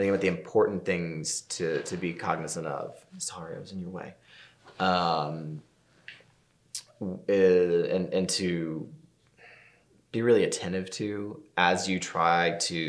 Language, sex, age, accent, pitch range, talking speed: English, male, 20-39, American, 85-100 Hz, 125 wpm